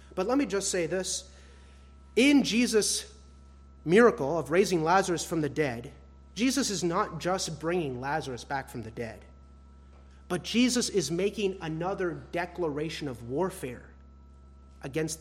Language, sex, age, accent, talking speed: English, male, 30-49, American, 135 wpm